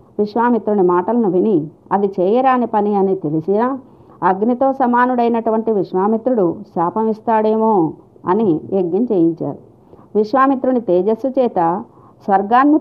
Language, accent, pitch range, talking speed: Telugu, native, 185-235 Hz, 90 wpm